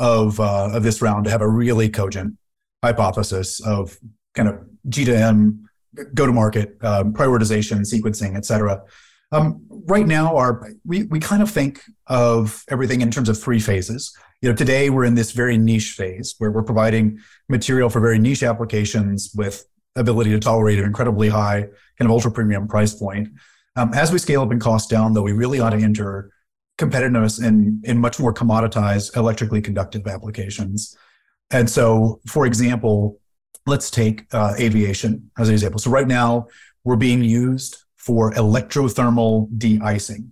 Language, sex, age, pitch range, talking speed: English, male, 30-49, 105-125 Hz, 170 wpm